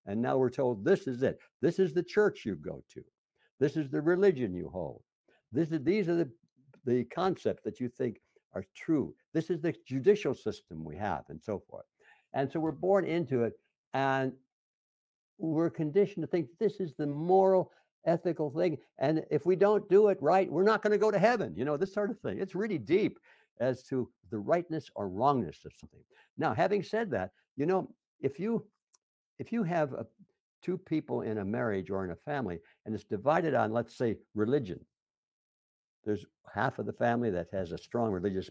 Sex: male